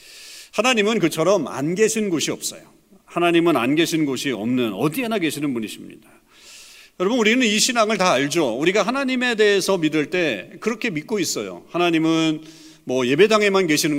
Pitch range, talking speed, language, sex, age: 130-205 Hz, 135 wpm, English, male, 40-59